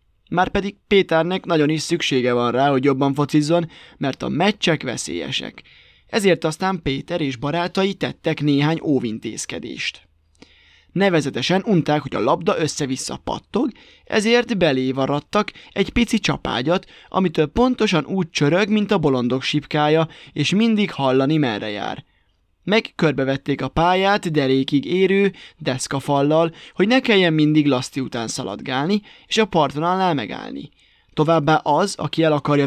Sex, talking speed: male, 125 wpm